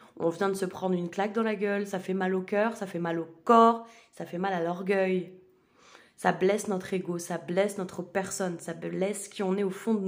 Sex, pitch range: female, 175-205 Hz